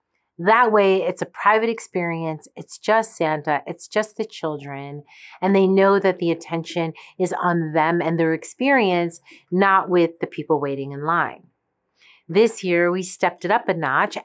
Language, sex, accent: English, female, American